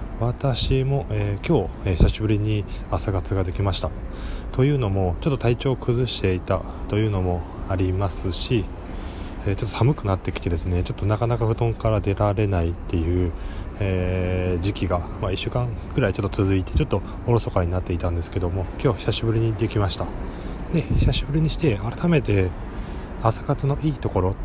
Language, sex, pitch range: Japanese, male, 90-120 Hz